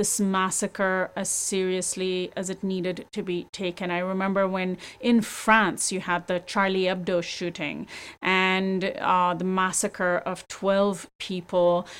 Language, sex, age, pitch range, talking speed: English, female, 30-49, 180-205 Hz, 140 wpm